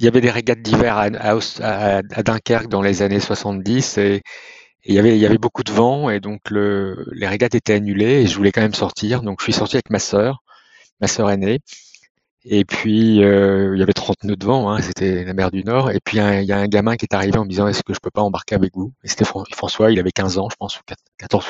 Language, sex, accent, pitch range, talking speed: French, male, French, 100-115 Hz, 275 wpm